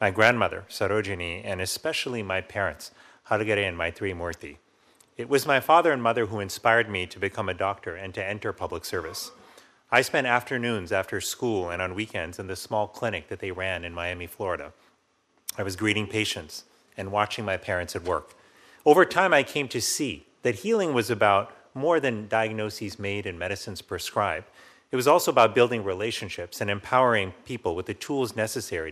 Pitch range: 95-120 Hz